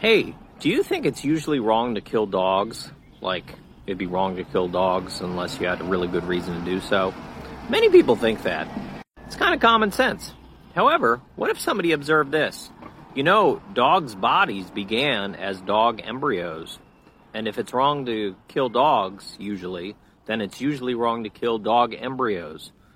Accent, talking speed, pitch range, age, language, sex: American, 175 wpm, 100-145 Hz, 40-59, English, male